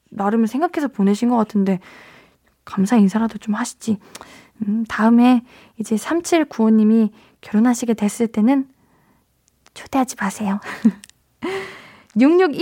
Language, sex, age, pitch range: Korean, female, 20-39, 210-310 Hz